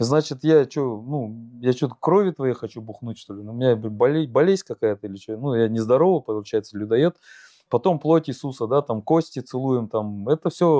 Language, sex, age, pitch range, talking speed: Russian, male, 20-39, 120-170 Hz, 180 wpm